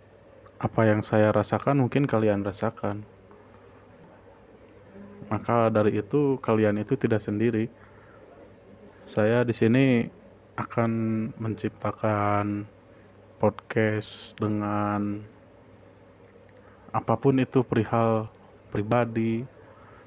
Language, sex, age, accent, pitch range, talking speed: Indonesian, male, 20-39, native, 105-115 Hz, 75 wpm